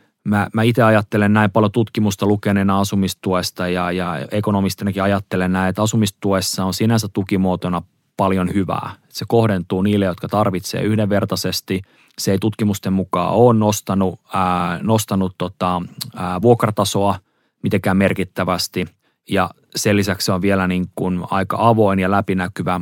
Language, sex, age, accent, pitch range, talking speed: Finnish, male, 30-49, native, 95-105 Hz, 135 wpm